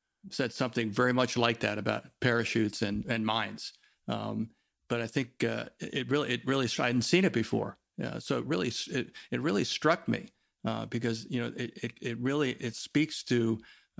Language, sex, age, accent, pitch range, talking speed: English, male, 50-69, American, 115-130 Hz, 195 wpm